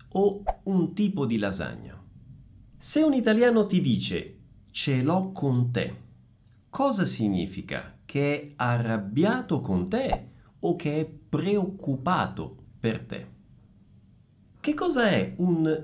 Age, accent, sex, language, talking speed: 40-59, native, male, Italian, 115 wpm